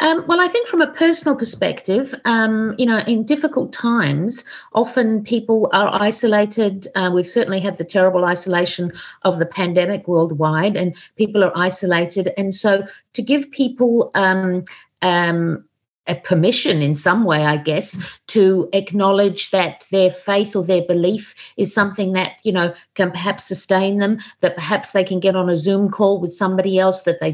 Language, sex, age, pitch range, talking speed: English, female, 50-69, 175-210 Hz, 170 wpm